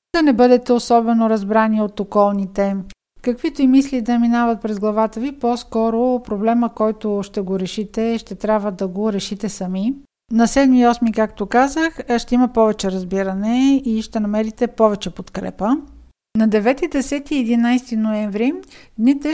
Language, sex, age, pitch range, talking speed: Bulgarian, female, 50-69, 215-245 Hz, 150 wpm